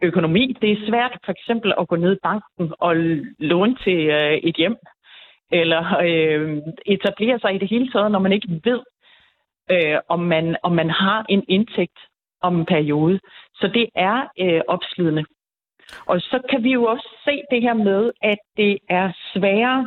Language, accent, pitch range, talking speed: Danish, native, 180-230 Hz, 165 wpm